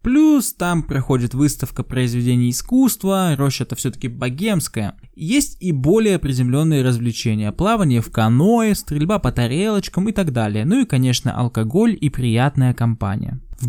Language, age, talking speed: Russian, 20-39, 140 wpm